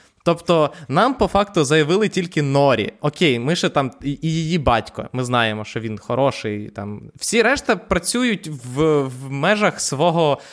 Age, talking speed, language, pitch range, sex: 20-39, 155 wpm, Ukrainian, 130-170 Hz, male